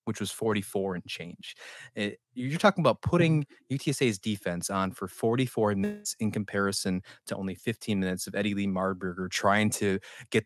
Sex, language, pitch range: male, English, 105-135 Hz